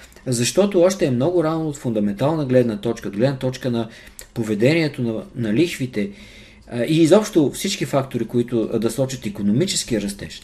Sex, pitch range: male, 110-150 Hz